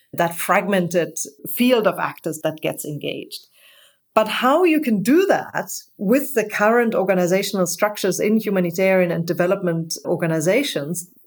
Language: English